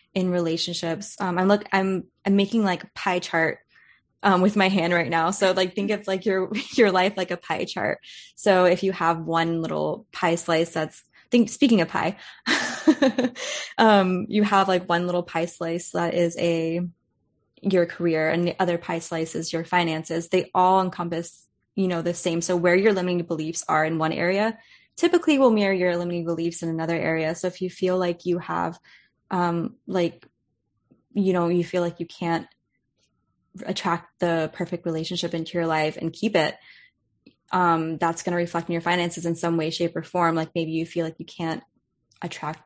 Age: 20-39